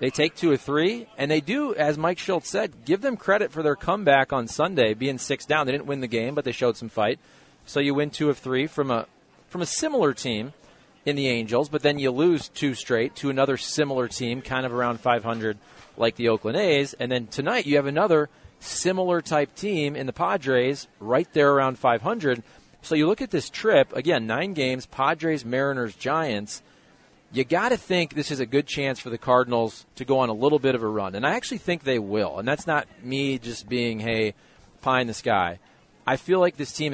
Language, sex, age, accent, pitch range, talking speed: English, male, 40-59, American, 120-150 Hz, 225 wpm